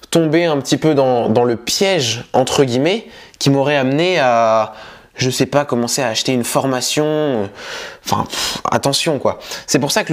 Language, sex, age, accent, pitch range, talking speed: French, male, 20-39, French, 115-155 Hz, 180 wpm